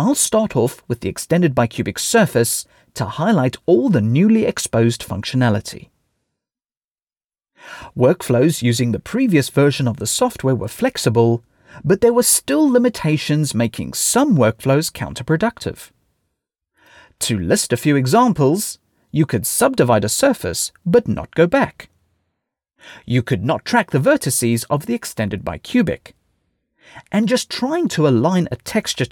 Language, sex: English, male